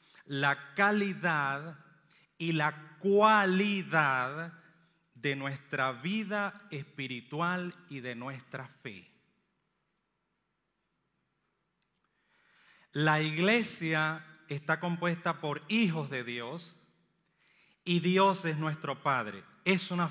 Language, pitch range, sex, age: Romanian, 140-180 Hz, male, 40-59